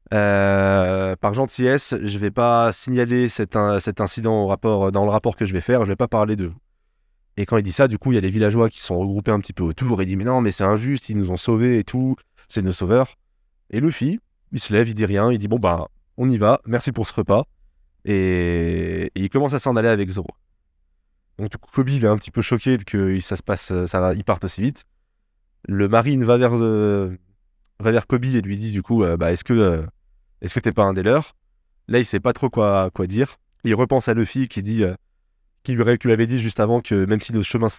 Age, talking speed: 20-39, 250 wpm